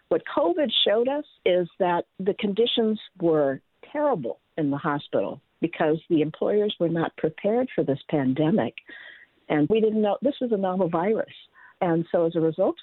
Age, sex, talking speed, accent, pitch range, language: 50-69, female, 170 wpm, American, 155-190 Hz, English